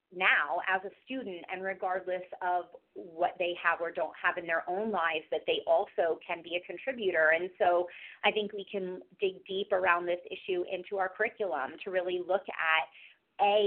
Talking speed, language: 190 wpm, English